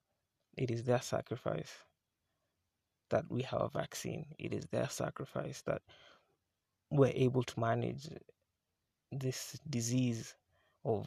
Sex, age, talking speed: male, 20-39, 115 wpm